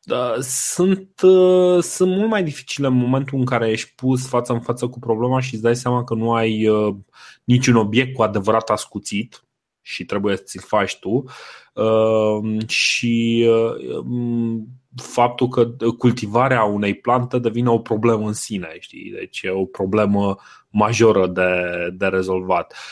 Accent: native